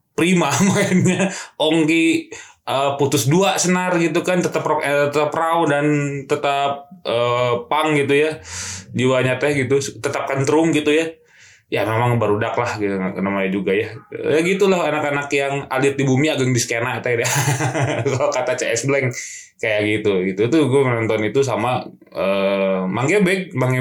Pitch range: 115-155 Hz